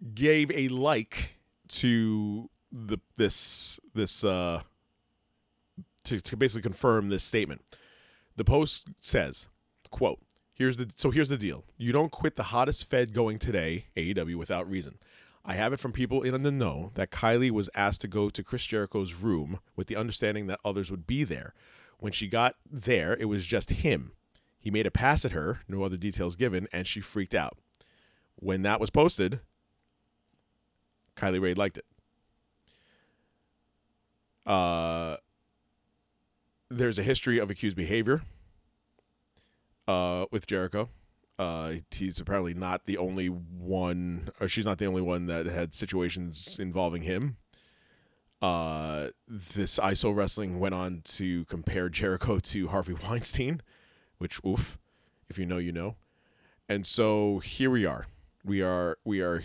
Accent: American